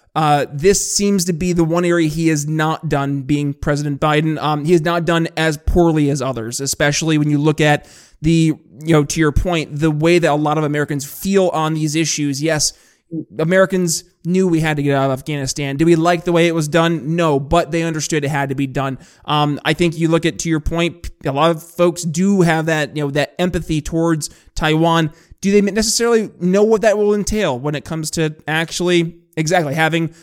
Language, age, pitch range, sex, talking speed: English, 20-39, 150-175 Hz, male, 220 wpm